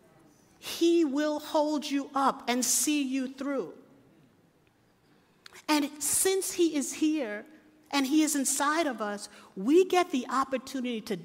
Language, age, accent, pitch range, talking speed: English, 50-69, American, 225-305 Hz, 135 wpm